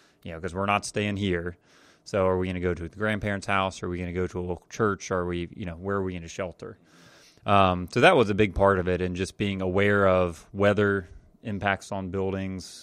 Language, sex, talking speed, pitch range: English, male, 260 wpm, 90-105 Hz